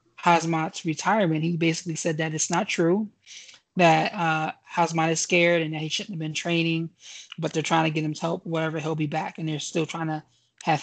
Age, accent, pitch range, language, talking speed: 20-39, American, 160-185 Hz, English, 215 wpm